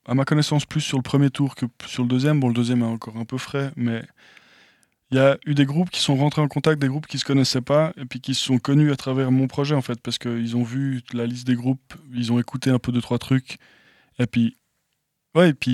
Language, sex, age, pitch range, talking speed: French, male, 20-39, 120-140 Hz, 275 wpm